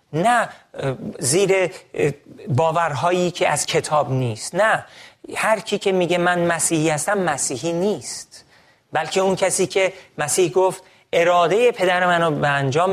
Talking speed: 125 wpm